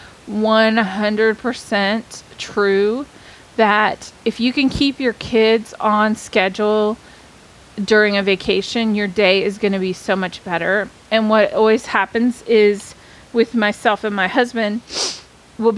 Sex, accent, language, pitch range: female, American, English, 200-230 Hz